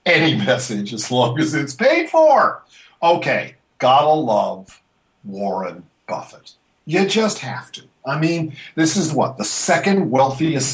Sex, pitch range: male, 125-170 Hz